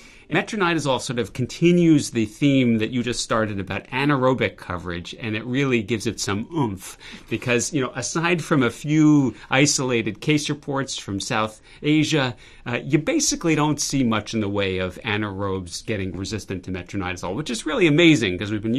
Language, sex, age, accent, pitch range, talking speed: English, male, 40-59, American, 100-135 Hz, 175 wpm